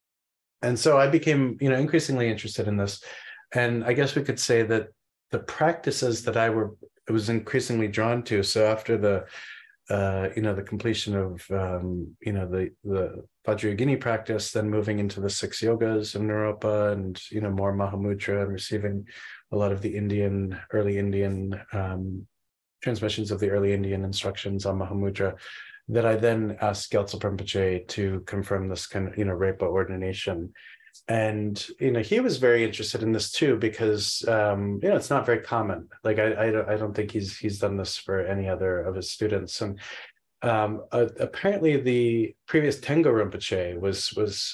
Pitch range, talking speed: 95-115 Hz, 180 wpm